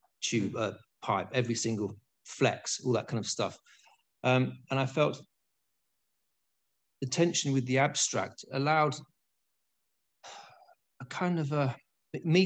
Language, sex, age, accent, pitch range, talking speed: English, male, 40-59, British, 115-140 Hz, 125 wpm